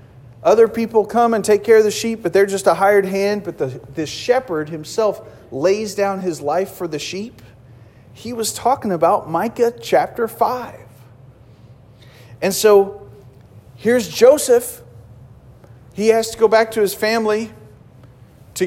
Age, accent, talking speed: 40-59, American, 150 wpm